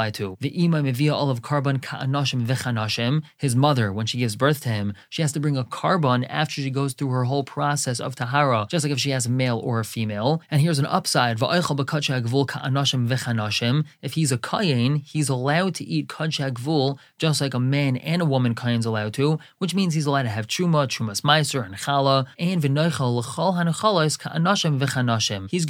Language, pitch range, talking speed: English, 130-170 Hz, 165 wpm